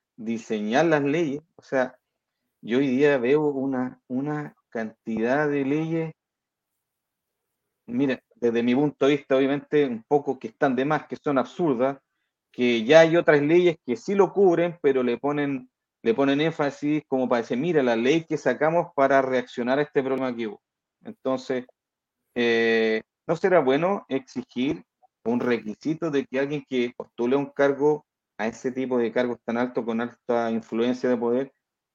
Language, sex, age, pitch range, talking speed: Spanish, male, 40-59, 125-160 Hz, 160 wpm